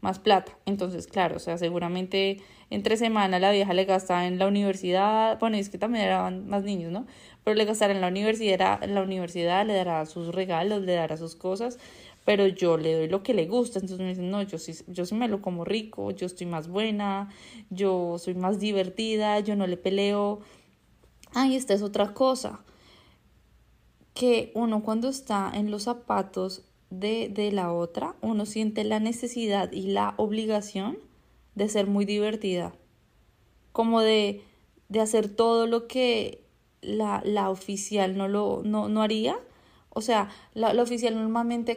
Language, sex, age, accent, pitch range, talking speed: Spanish, female, 20-39, Colombian, 190-225 Hz, 170 wpm